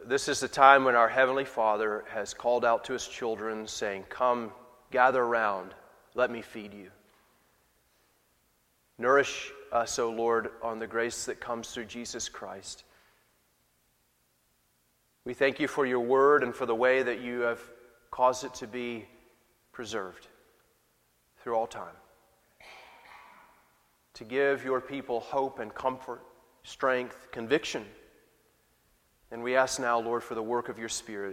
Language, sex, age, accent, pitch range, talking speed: English, male, 30-49, American, 110-130 Hz, 145 wpm